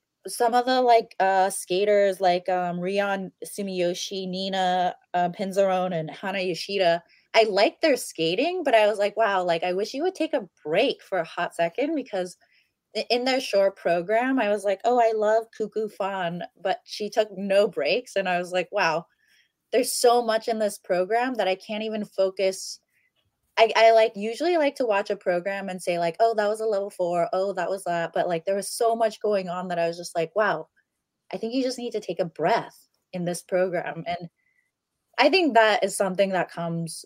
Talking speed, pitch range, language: 205 wpm, 175-225 Hz, English